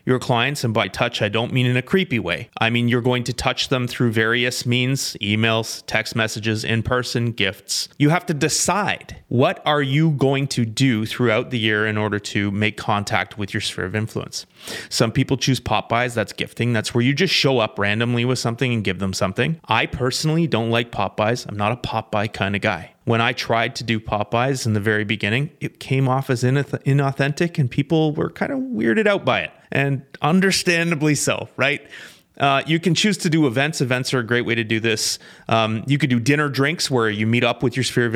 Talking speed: 215 wpm